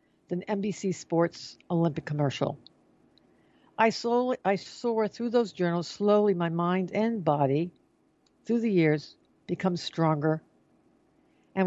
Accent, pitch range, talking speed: American, 155-205 Hz, 115 wpm